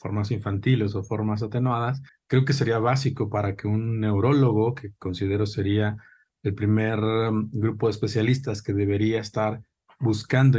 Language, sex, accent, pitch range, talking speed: Spanish, male, Mexican, 105-125 Hz, 140 wpm